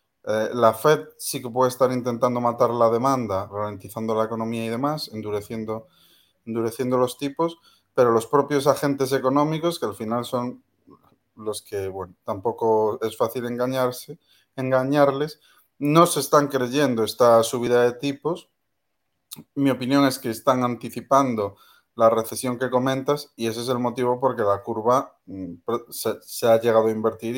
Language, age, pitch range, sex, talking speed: Spanish, 30-49, 110-130 Hz, male, 150 wpm